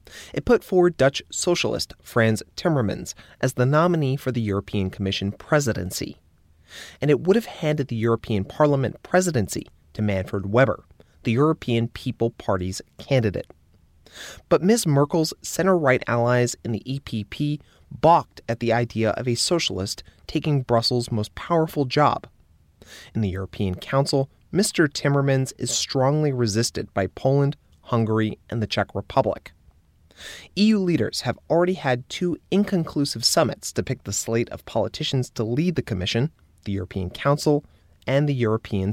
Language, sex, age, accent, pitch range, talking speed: English, male, 30-49, American, 105-145 Hz, 140 wpm